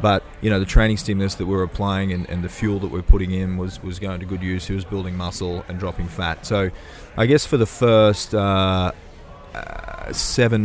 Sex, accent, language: male, Australian, English